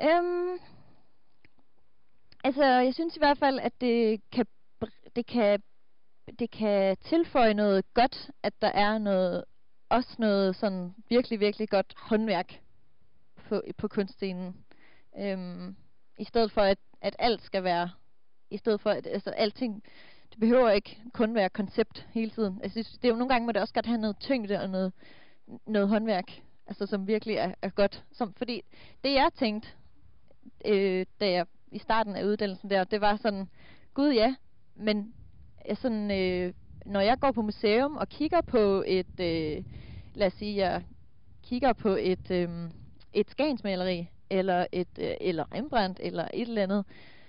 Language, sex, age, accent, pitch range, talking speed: Danish, female, 30-49, native, 200-255 Hz, 160 wpm